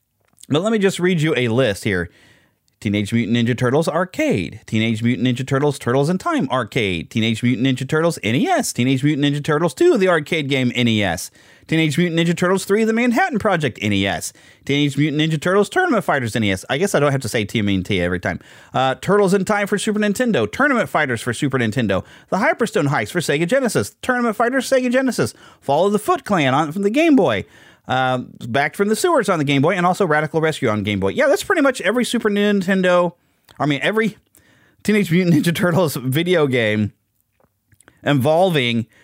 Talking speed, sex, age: 195 wpm, male, 30-49